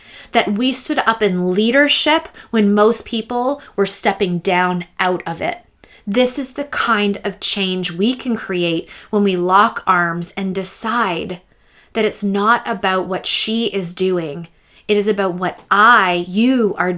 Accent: American